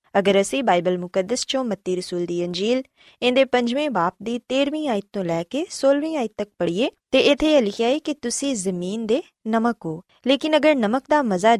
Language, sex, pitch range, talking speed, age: Punjabi, female, 190-275 Hz, 170 wpm, 20-39